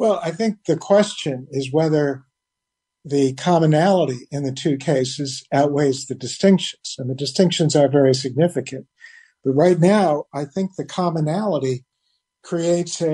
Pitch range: 135-170 Hz